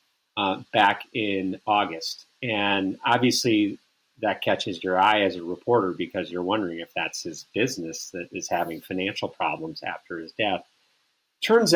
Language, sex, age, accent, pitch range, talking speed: English, male, 40-59, American, 95-135 Hz, 150 wpm